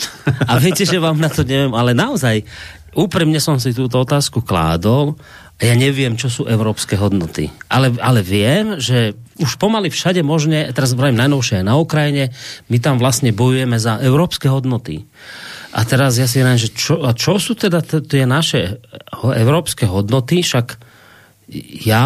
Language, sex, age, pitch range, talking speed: Slovak, male, 40-59, 110-145 Hz, 160 wpm